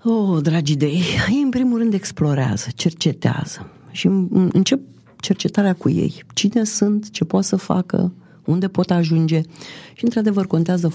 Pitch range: 150-205 Hz